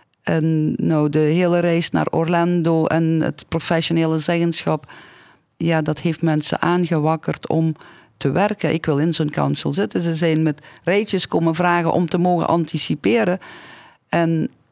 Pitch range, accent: 145-170 Hz, Dutch